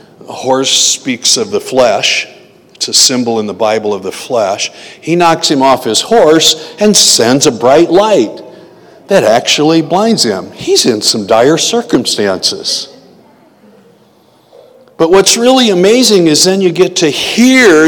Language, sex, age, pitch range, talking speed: English, male, 60-79, 140-185 Hz, 150 wpm